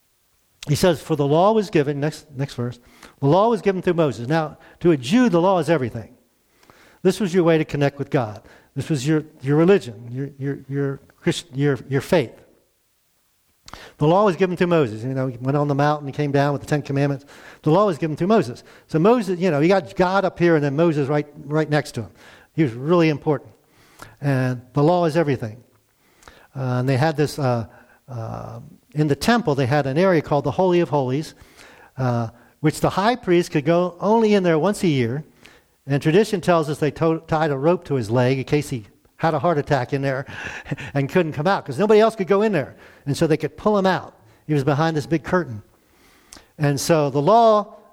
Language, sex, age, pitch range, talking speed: English, male, 50-69, 135-170 Hz, 220 wpm